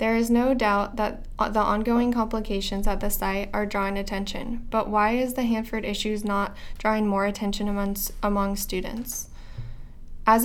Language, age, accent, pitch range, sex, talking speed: English, 10-29, American, 200-225 Hz, female, 160 wpm